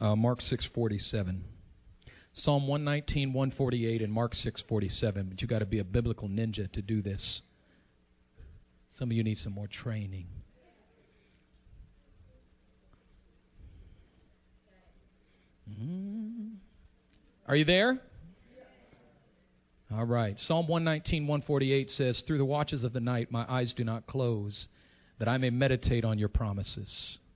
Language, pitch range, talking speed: English, 105-150 Hz, 140 wpm